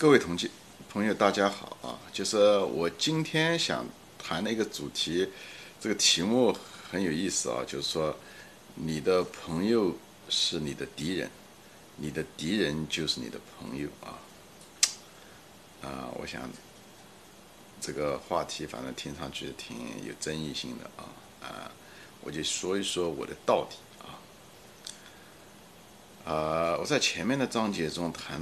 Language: Chinese